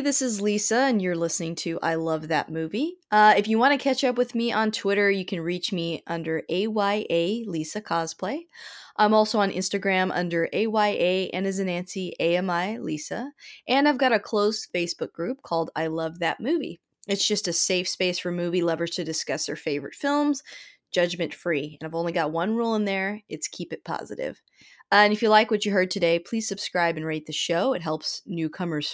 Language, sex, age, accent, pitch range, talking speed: English, female, 20-39, American, 170-215 Hz, 205 wpm